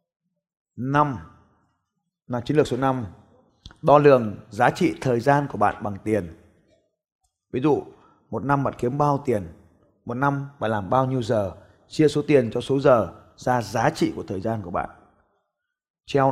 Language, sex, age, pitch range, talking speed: Vietnamese, male, 20-39, 110-150 Hz, 170 wpm